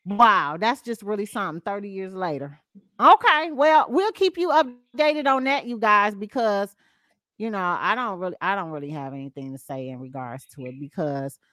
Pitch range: 190-280 Hz